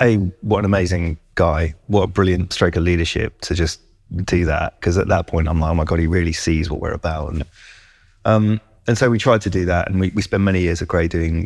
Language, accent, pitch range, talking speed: English, British, 85-105 Hz, 250 wpm